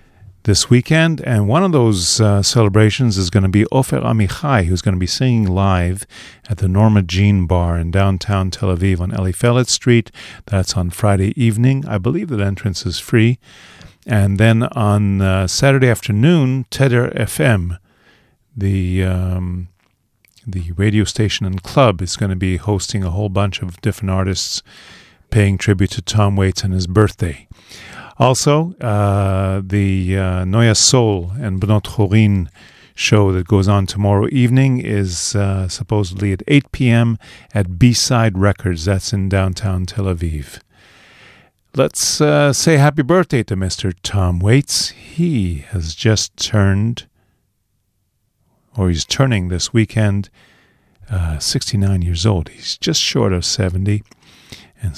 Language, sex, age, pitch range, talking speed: English, male, 50-69, 95-115 Hz, 145 wpm